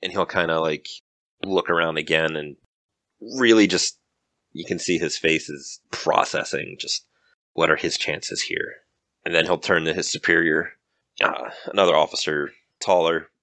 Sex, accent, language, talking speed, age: male, American, English, 155 wpm, 30-49